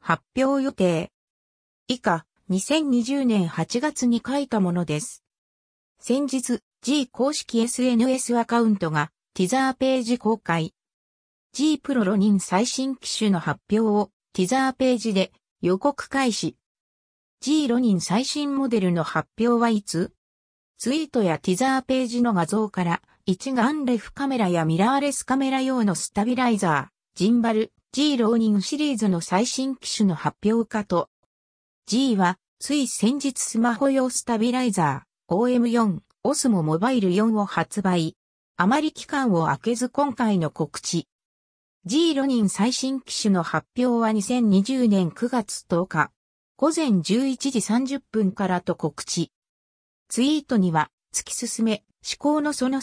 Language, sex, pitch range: Japanese, female, 180-260 Hz